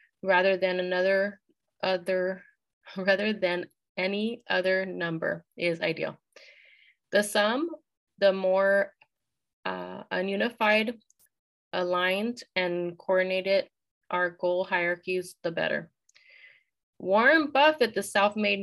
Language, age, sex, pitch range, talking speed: English, 20-39, female, 185-215 Hz, 95 wpm